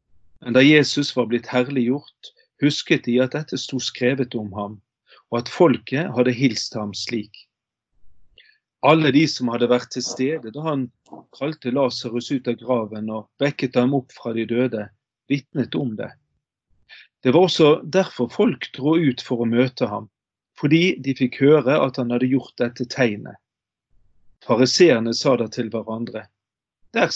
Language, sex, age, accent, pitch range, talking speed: English, male, 40-59, Swedish, 115-140 Hz, 160 wpm